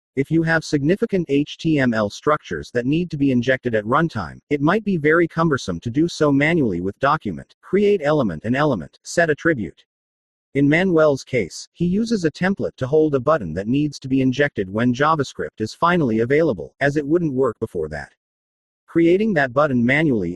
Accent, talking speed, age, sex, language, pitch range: American, 180 wpm, 40-59, male, English, 115-155 Hz